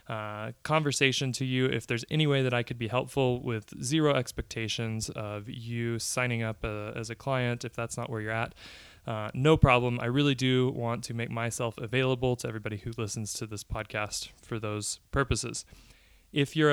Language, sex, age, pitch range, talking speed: English, male, 20-39, 115-130 Hz, 190 wpm